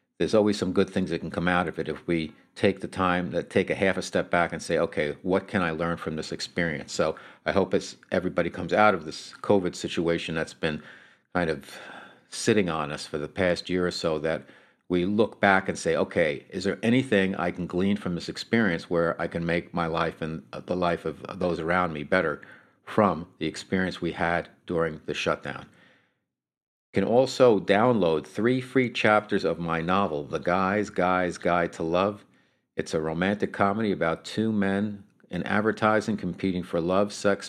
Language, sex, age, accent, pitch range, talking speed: English, male, 50-69, American, 85-100 Hz, 195 wpm